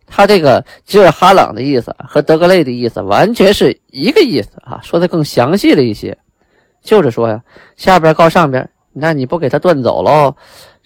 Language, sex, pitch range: Chinese, male, 120-155 Hz